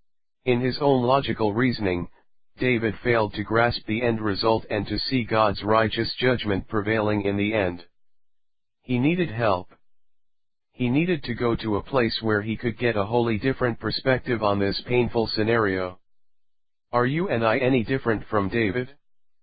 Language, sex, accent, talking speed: English, male, American, 160 wpm